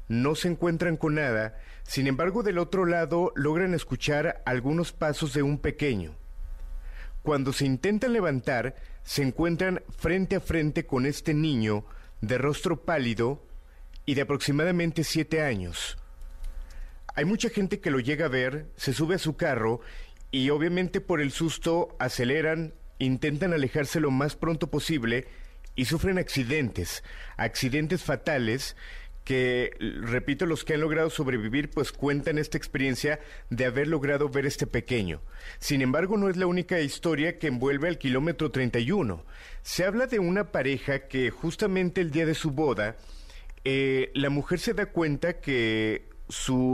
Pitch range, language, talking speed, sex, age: 125-165 Hz, Spanish, 150 wpm, male, 40-59